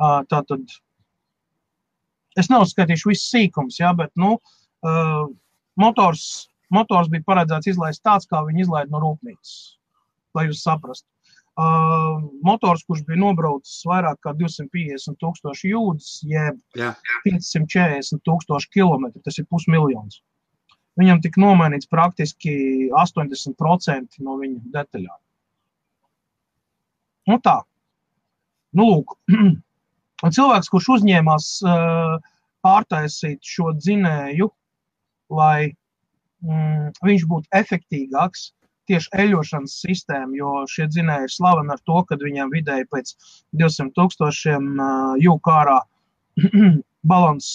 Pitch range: 150-185 Hz